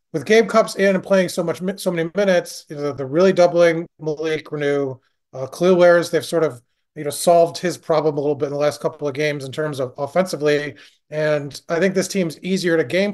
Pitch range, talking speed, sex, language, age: 150-185 Hz, 225 wpm, male, English, 30-49